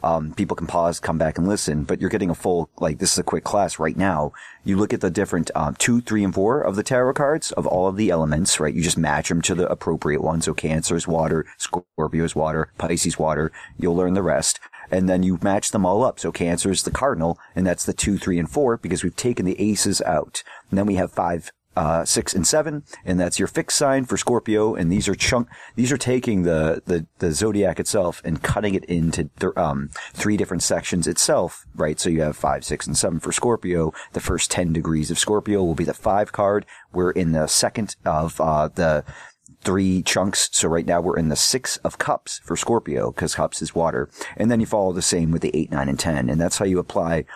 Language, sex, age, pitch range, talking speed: English, male, 40-59, 80-100 Hz, 235 wpm